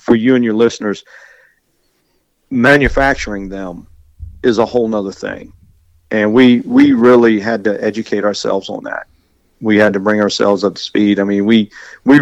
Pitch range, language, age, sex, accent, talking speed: 105-125 Hz, English, 50-69, male, American, 165 wpm